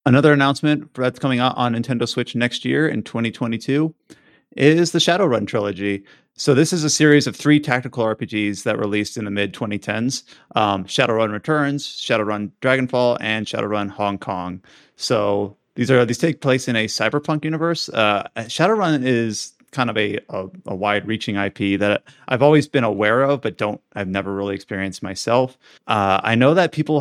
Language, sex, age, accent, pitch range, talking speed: English, male, 30-49, American, 100-130 Hz, 170 wpm